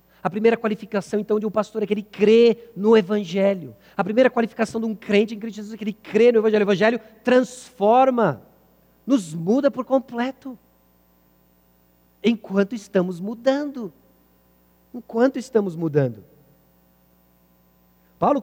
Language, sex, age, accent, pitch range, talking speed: Portuguese, male, 40-59, Brazilian, 175-230 Hz, 135 wpm